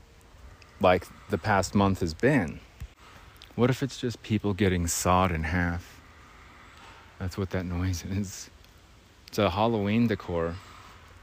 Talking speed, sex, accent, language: 130 wpm, male, American, English